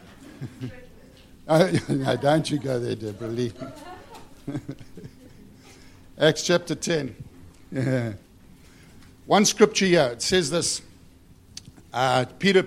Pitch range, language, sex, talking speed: 125-180 Hz, English, male, 80 wpm